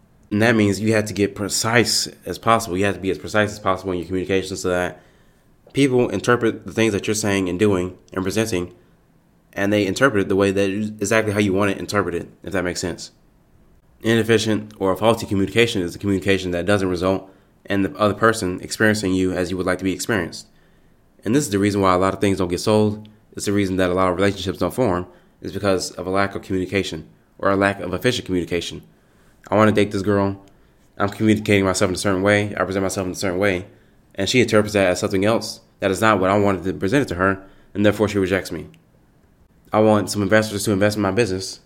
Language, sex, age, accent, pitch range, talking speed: English, male, 20-39, American, 95-105 Hz, 235 wpm